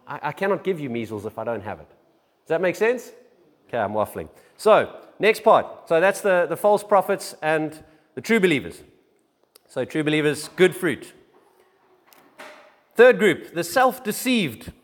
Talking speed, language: 160 wpm, English